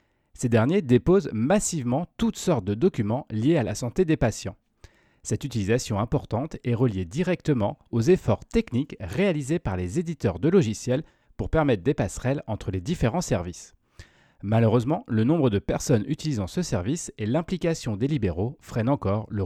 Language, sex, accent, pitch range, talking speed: French, male, French, 110-160 Hz, 160 wpm